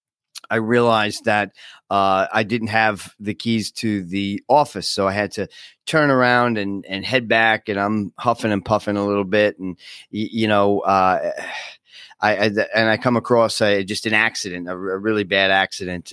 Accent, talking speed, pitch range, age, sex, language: American, 180 wpm, 100-125 Hz, 40-59, male, English